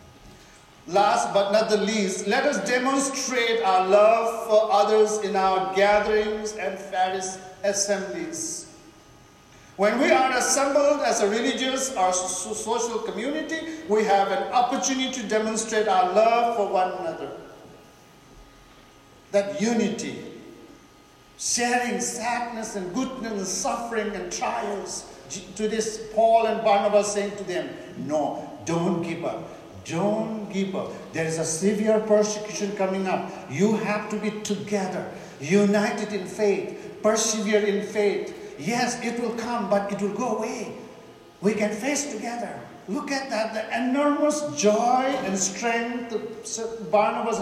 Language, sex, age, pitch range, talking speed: English, male, 50-69, 195-235 Hz, 135 wpm